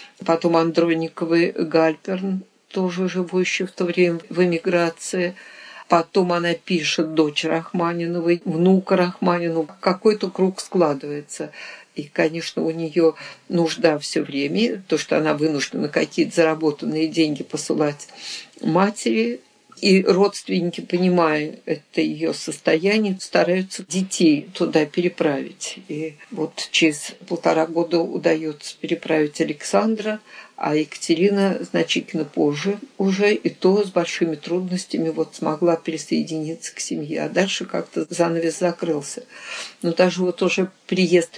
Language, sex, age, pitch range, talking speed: Russian, female, 50-69, 160-185 Hz, 115 wpm